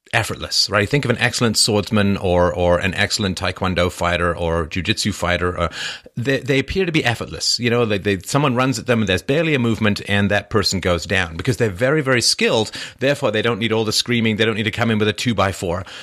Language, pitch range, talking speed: English, 90-120 Hz, 240 wpm